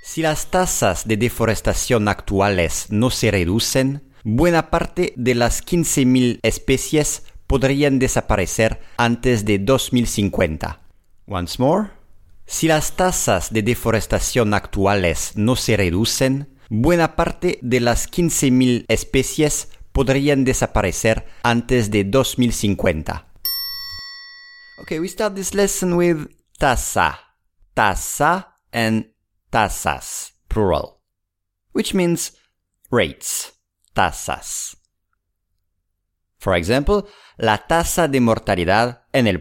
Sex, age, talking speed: male, 50-69, 100 wpm